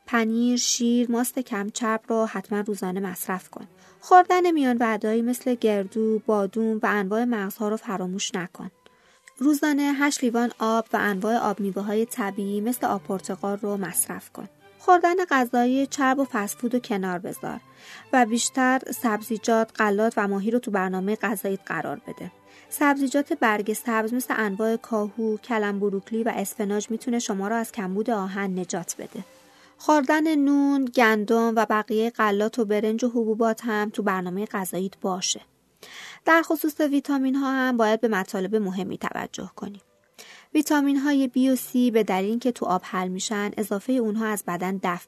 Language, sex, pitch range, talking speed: Persian, female, 205-250 Hz, 155 wpm